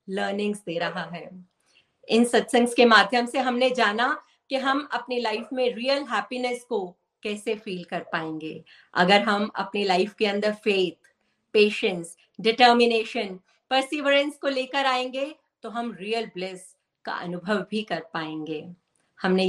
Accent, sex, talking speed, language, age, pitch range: native, female, 90 wpm, Hindi, 50-69, 205-270 Hz